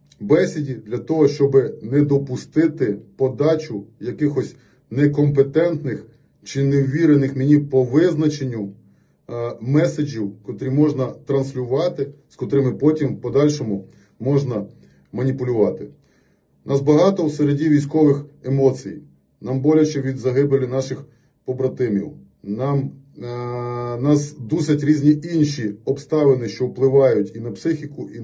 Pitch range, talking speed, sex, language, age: 115-145 Hz, 105 wpm, male, Russian, 30-49